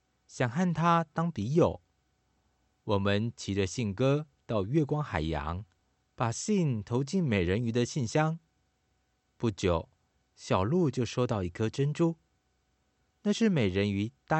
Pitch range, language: 95-155 Hz, Chinese